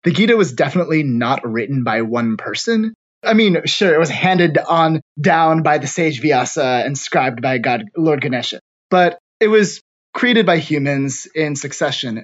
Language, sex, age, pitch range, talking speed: English, male, 20-39, 130-165 Hz, 165 wpm